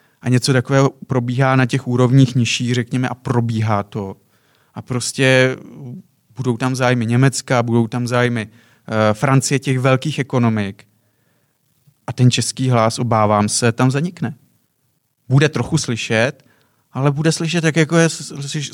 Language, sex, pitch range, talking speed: Czech, male, 125-150 Hz, 140 wpm